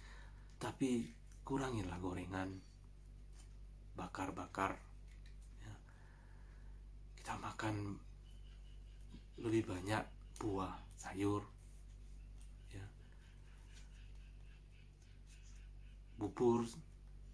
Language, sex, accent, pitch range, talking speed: Indonesian, male, native, 95-110 Hz, 45 wpm